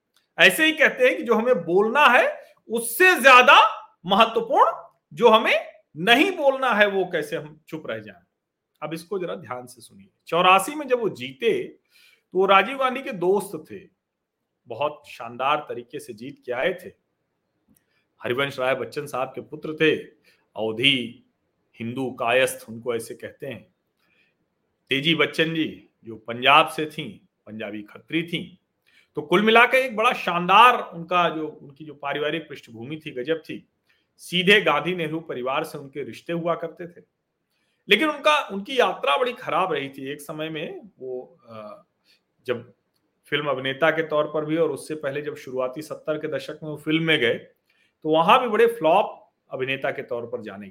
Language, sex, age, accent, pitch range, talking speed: Hindi, male, 40-59, native, 150-235 Hz, 165 wpm